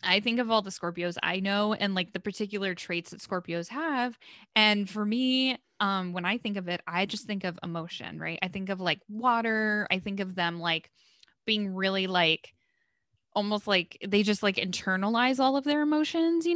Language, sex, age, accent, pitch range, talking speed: English, female, 10-29, American, 180-225 Hz, 200 wpm